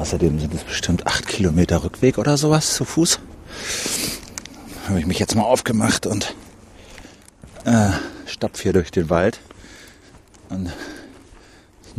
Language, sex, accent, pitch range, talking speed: German, male, German, 80-95 Hz, 140 wpm